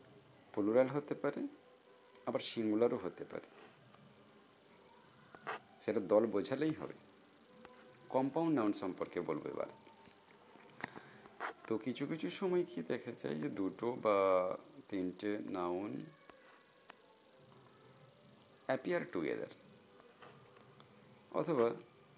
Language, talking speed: Bengali, 80 wpm